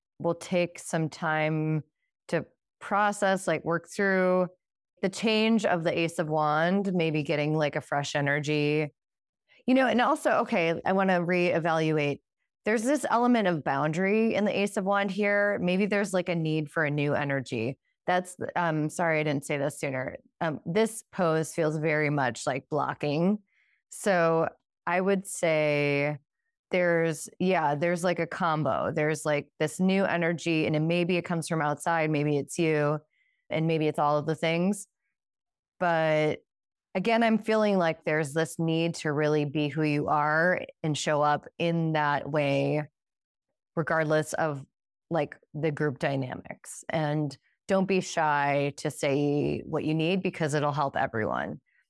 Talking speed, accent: 160 wpm, American